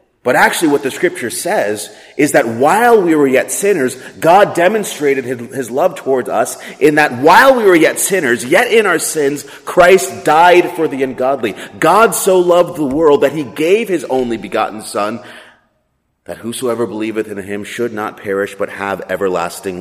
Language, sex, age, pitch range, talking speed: English, male, 30-49, 125-165 Hz, 180 wpm